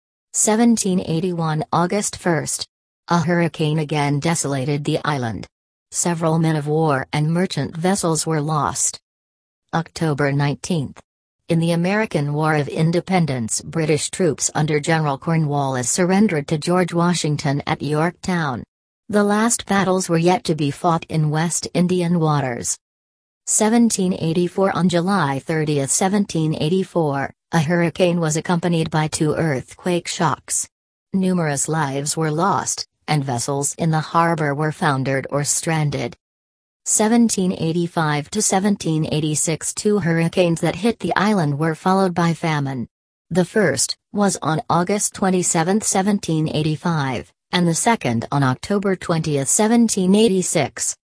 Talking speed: 115 wpm